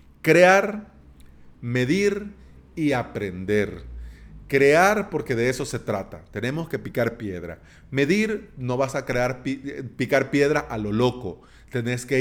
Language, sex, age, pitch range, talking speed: Spanish, male, 40-59, 110-145 Hz, 130 wpm